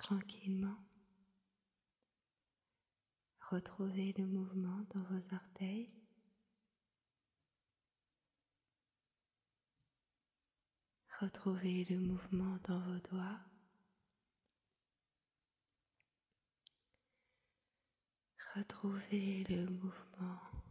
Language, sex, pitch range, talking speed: French, female, 185-215 Hz, 45 wpm